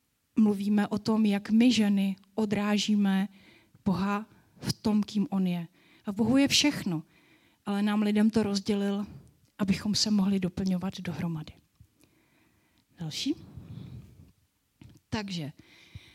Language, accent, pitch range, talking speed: Czech, native, 185-220 Hz, 110 wpm